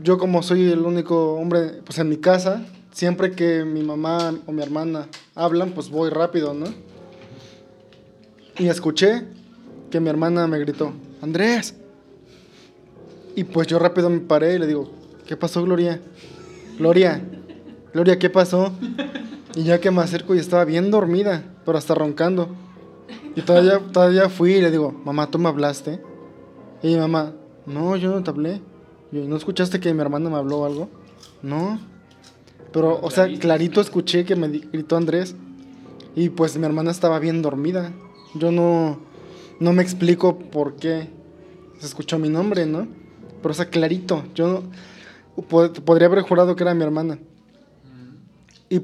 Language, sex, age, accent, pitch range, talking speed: English, male, 20-39, Mexican, 155-180 Hz, 160 wpm